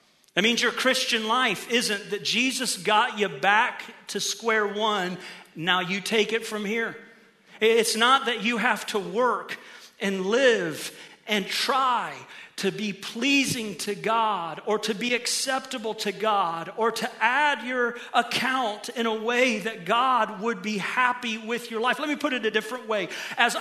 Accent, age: American, 40-59